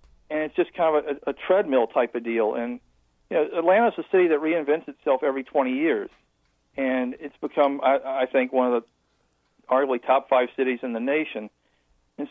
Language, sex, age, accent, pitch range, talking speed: English, male, 50-69, American, 130-155 Hz, 190 wpm